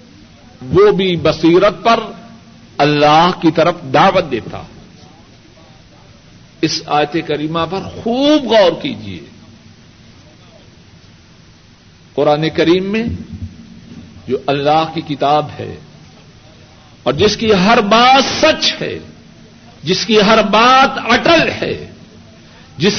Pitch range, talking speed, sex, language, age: 155-235 Hz, 100 wpm, male, Urdu, 60-79